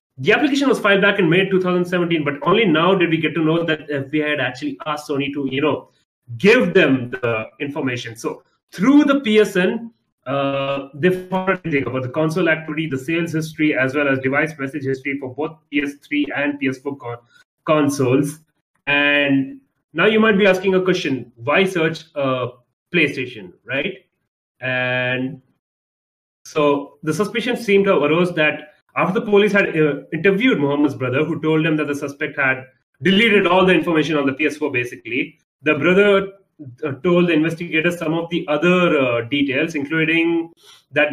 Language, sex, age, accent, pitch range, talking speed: English, male, 30-49, Indian, 140-175 Hz, 170 wpm